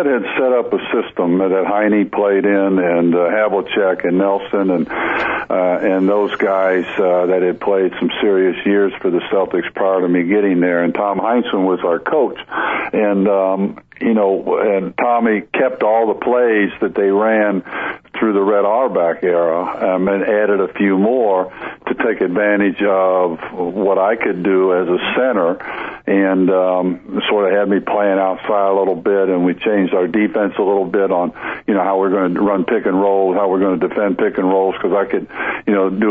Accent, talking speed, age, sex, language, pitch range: American, 200 wpm, 50-69, male, English, 95-105 Hz